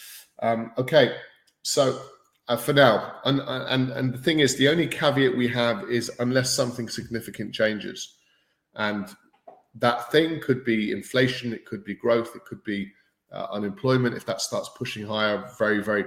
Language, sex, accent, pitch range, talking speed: English, male, British, 110-130 Hz, 165 wpm